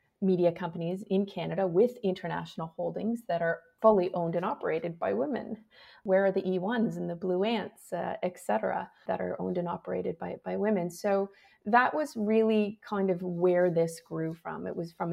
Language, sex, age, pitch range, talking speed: English, female, 30-49, 175-215 Hz, 185 wpm